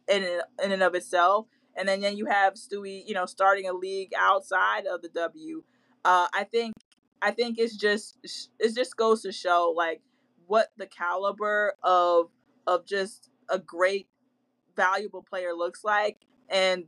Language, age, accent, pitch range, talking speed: English, 20-39, American, 180-230 Hz, 165 wpm